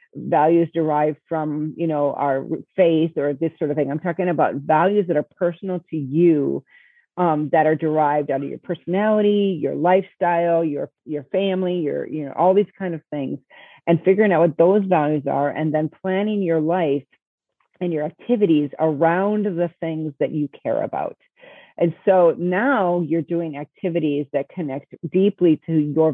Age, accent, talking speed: 40-59, American, 170 wpm